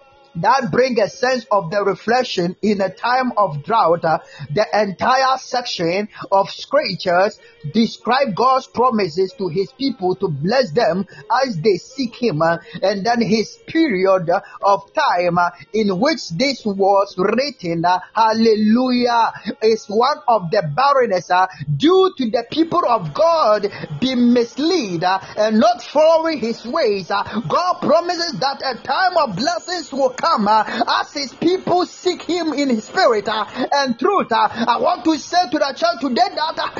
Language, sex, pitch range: Japanese, male, 215-325 Hz